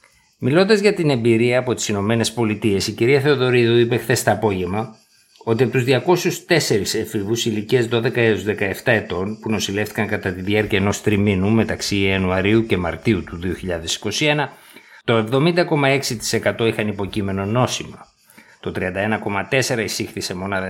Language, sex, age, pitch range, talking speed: Greek, male, 50-69, 105-125 Hz, 135 wpm